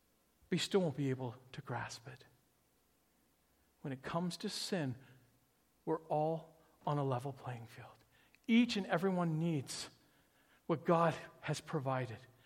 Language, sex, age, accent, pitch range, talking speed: English, male, 50-69, American, 140-200 Hz, 135 wpm